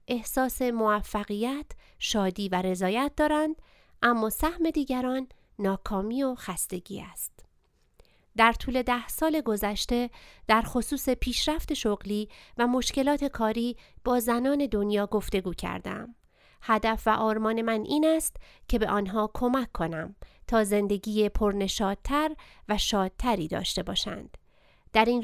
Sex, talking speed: female, 120 wpm